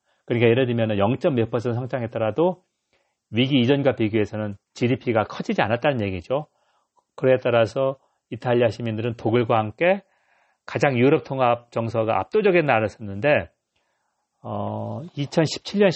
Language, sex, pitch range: Korean, male, 115-150 Hz